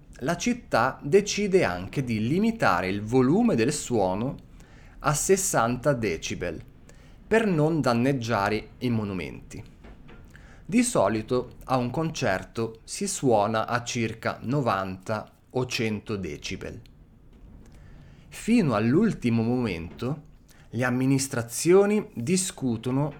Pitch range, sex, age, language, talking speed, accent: 110-145 Hz, male, 30-49, Italian, 95 wpm, native